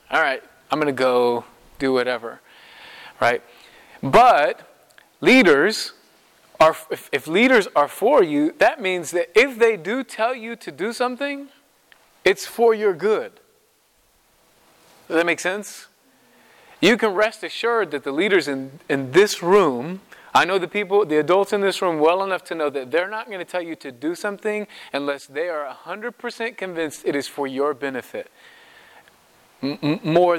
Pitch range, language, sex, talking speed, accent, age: 155-225 Hz, English, male, 160 wpm, American, 30-49